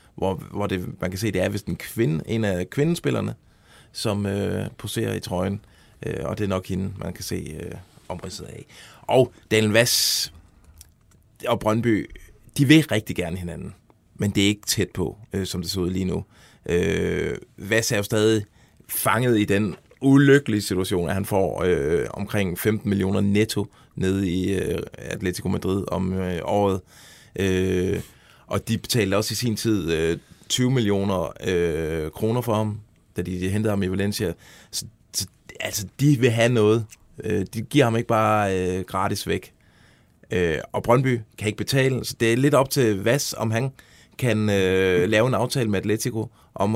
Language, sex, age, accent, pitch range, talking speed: Danish, male, 30-49, native, 95-115 Hz, 180 wpm